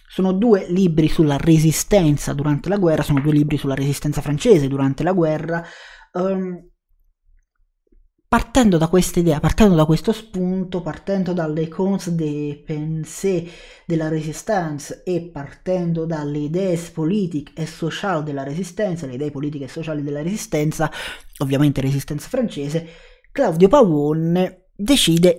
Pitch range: 145-185 Hz